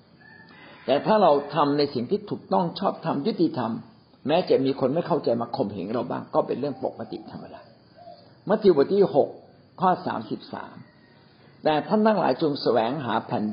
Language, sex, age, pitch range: Thai, male, 60-79, 120-170 Hz